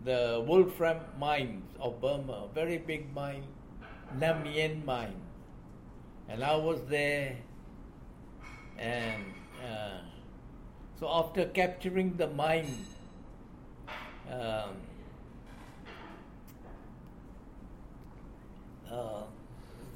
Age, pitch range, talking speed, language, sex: 60-79, 130-180 Hz, 70 wpm, English, male